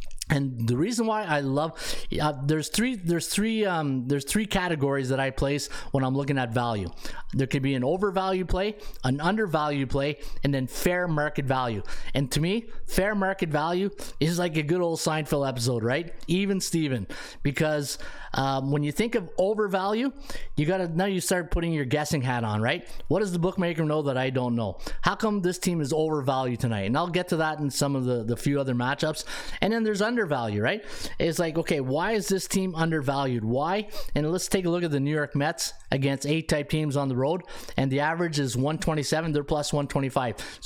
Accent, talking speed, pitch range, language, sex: American, 205 wpm, 140-185 Hz, English, male